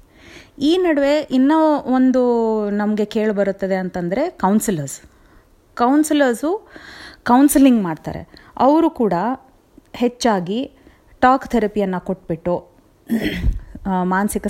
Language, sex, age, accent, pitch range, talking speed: Telugu, female, 30-49, native, 190-255 Hz, 65 wpm